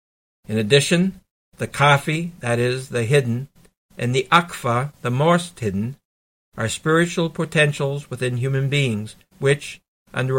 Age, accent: 60-79, American